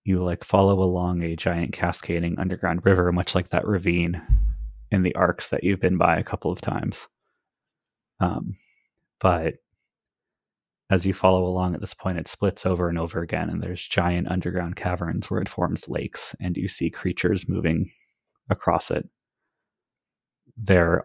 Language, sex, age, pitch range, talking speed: English, male, 20-39, 85-95 Hz, 160 wpm